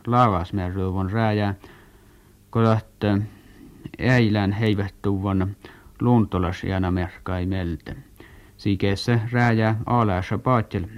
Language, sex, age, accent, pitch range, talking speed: Finnish, male, 50-69, native, 95-115 Hz, 65 wpm